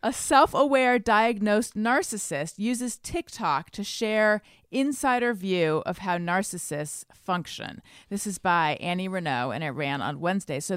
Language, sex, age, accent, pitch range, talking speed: English, female, 30-49, American, 165-210 Hz, 140 wpm